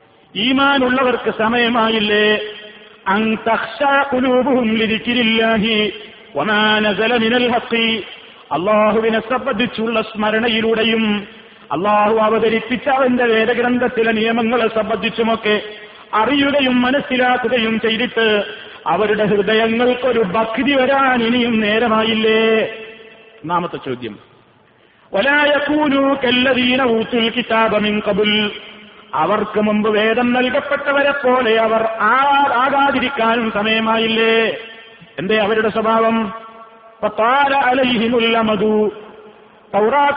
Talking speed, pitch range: 95 wpm, 220-250 Hz